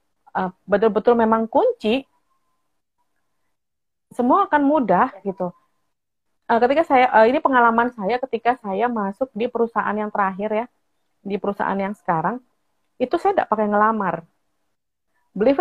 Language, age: Indonesian, 30-49